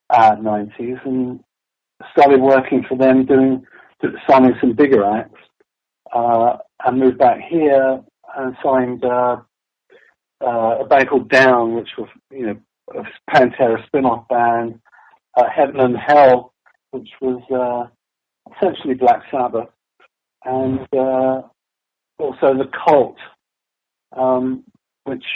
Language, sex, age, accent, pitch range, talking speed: English, male, 40-59, British, 125-145 Hz, 125 wpm